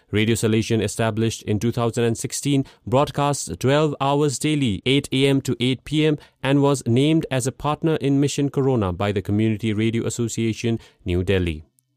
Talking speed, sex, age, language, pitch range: 150 wpm, male, 30-49, English, 115-140 Hz